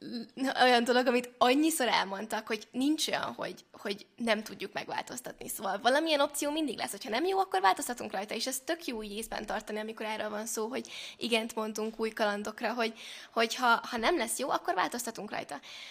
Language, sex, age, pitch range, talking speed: Hungarian, female, 20-39, 225-260 Hz, 185 wpm